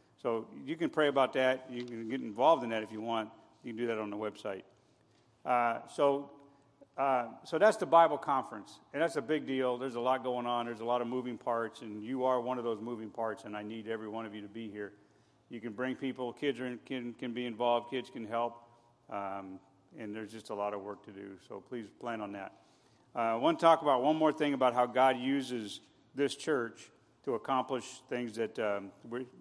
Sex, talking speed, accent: male, 230 wpm, American